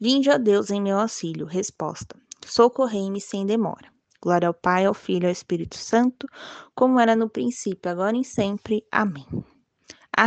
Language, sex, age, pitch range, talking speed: Portuguese, female, 20-39, 190-230 Hz, 165 wpm